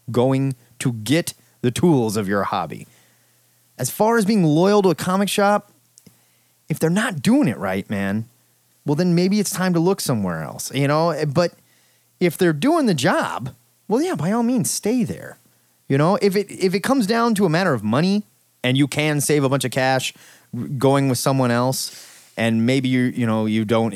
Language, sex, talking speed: English, male, 200 wpm